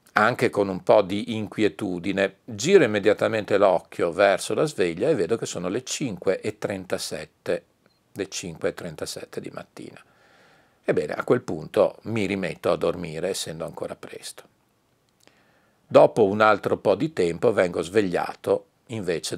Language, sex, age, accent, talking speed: Italian, male, 50-69, native, 125 wpm